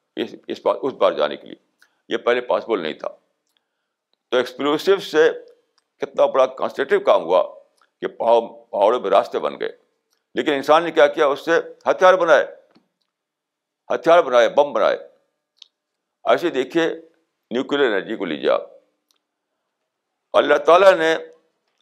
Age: 60-79